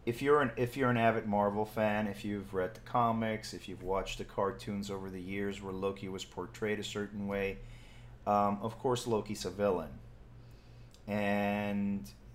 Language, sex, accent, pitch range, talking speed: English, male, American, 110-140 Hz, 175 wpm